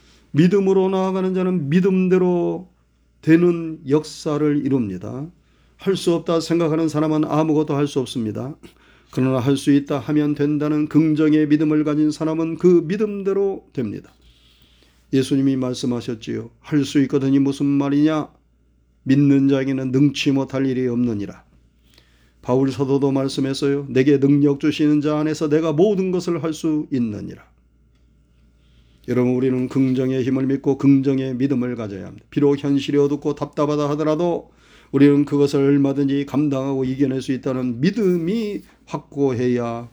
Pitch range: 130-160 Hz